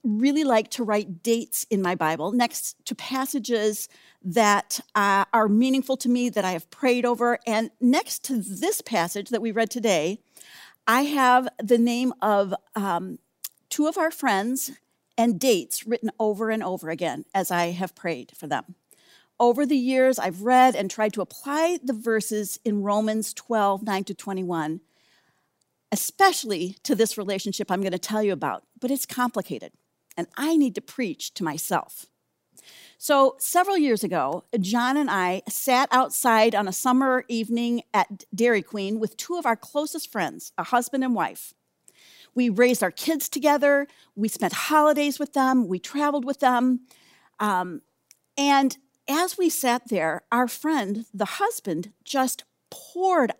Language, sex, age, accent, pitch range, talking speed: English, female, 50-69, American, 205-265 Hz, 160 wpm